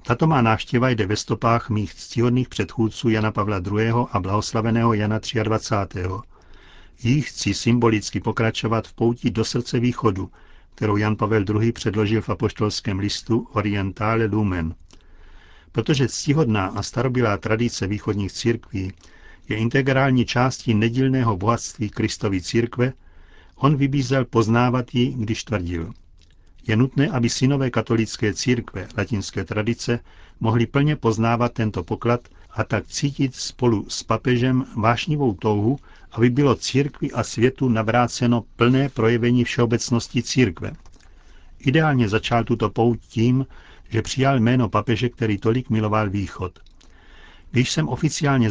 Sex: male